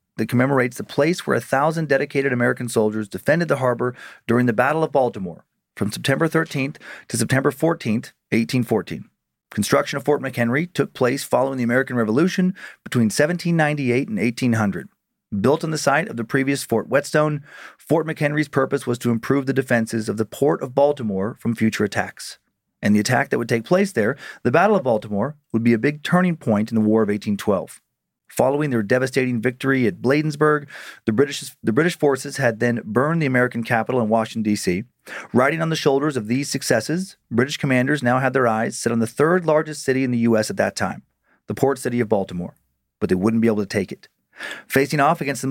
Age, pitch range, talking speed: 40-59, 115-145 Hz, 195 wpm